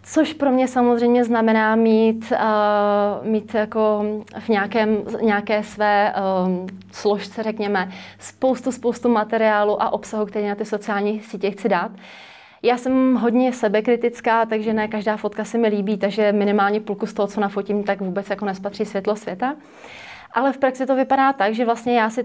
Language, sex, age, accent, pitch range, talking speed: Czech, female, 30-49, native, 210-245 Hz, 160 wpm